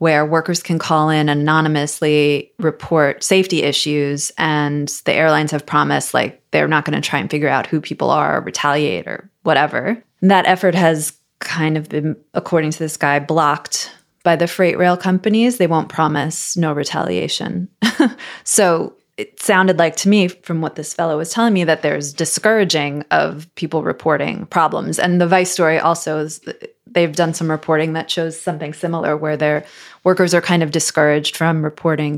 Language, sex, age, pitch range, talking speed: English, female, 20-39, 155-180 Hz, 180 wpm